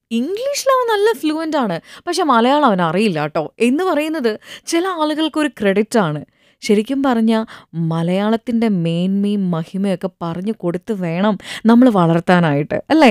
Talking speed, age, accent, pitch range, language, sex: 90 wpm, 20-39, native, 180-275 Hz, Malayalam, female